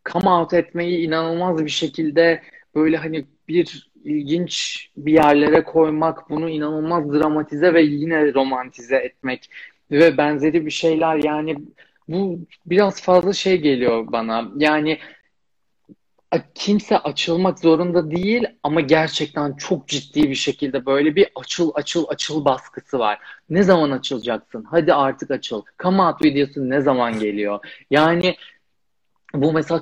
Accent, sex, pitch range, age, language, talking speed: native, male, 135-165 Hz, 30-49, Turkish, 125 wpm